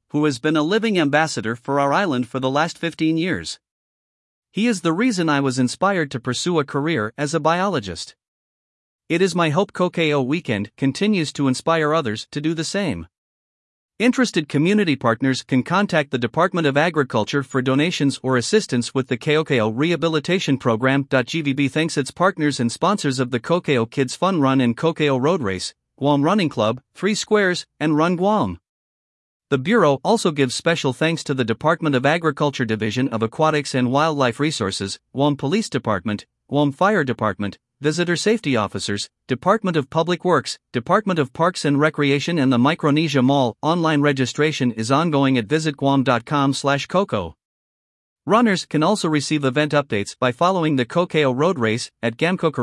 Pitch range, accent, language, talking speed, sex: 130-165 Hz, American, English, 165 wpm, male